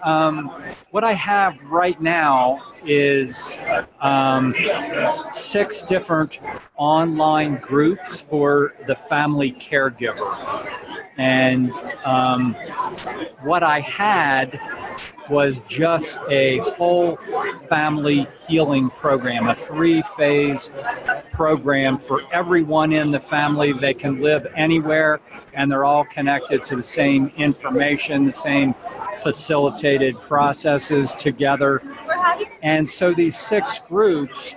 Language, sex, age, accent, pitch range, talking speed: English, male, 50-69, American, 140-165 Hz, 100 wpm